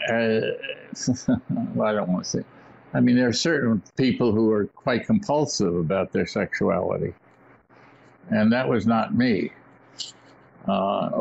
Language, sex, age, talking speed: English, male, 60-79, 135 wpm